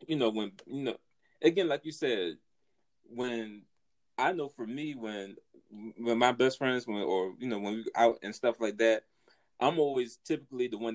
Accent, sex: American, male